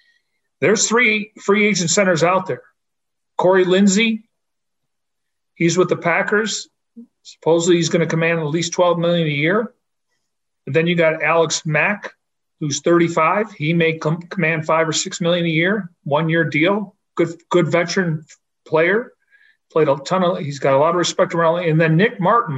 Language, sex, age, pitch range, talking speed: English, male, 40-59, 155-190 Hz, 170 wpm